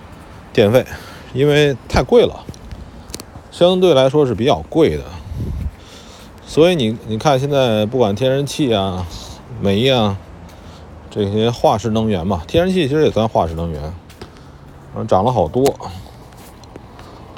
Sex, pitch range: male, 85-125 Hz